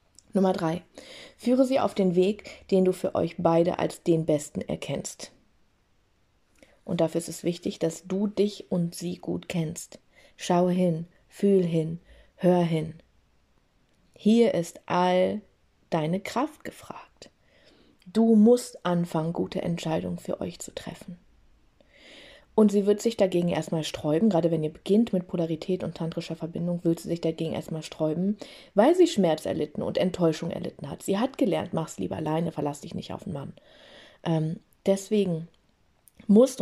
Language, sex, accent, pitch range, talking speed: German, female, German, 165-210 Hz, 155 wpm